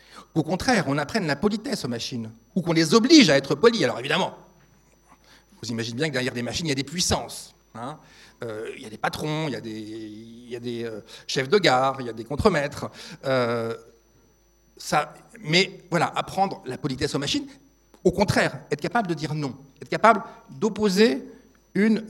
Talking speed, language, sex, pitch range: 195 wpm, French, male, 140-195 Hz